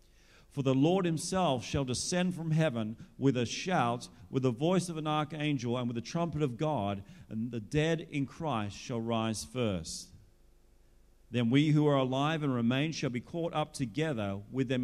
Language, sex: English, male